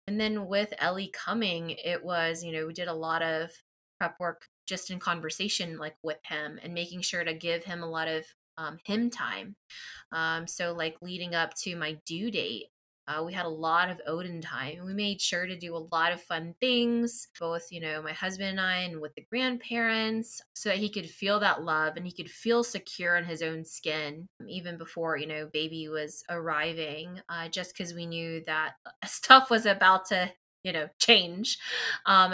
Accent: American